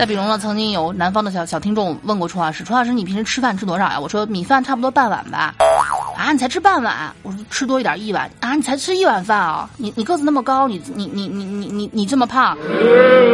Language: Chinese